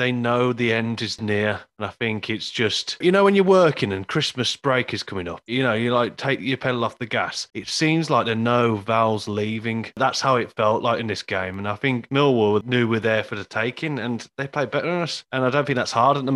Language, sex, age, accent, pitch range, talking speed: English, male, 30-49, British, 110-130 Hz, 265 wpm